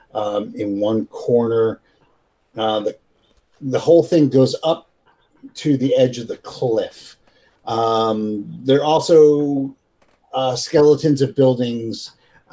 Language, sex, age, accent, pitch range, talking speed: English, male, 50-69, American, 115-155 Hz, 120 wpm